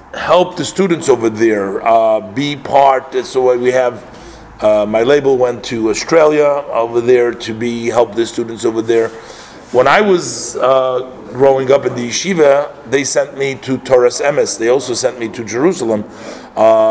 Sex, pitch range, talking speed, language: male, 115-145 Hz, 175 wpm, English